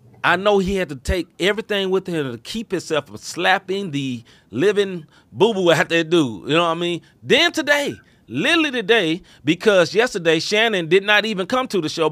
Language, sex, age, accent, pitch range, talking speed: English, male, 30-49, American, 145-210 Hz, 195 wpm